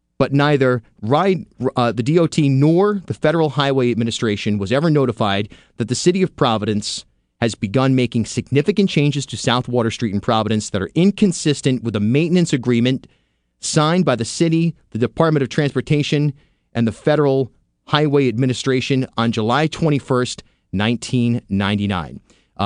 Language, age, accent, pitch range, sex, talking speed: English, 30-49, American, 110-150 Hz, male, 140 wpm